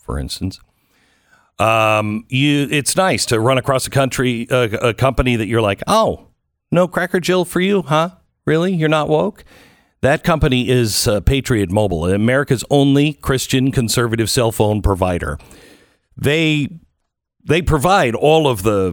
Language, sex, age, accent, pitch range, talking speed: English, male, 50-69, American, 110-150 Hz, 145 wpm